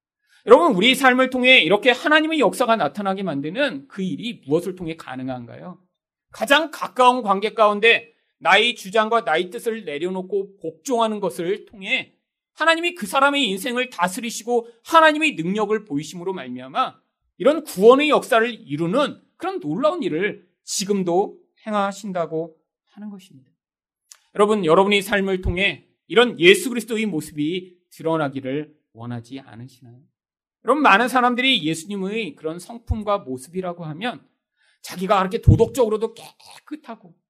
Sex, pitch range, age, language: male, 180-265 Hz, 40-59, Korean